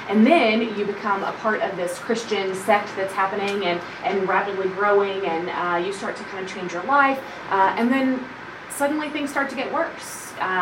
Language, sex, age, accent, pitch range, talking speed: English, female, 20-39, American, 190-235 Hz, 205 wpm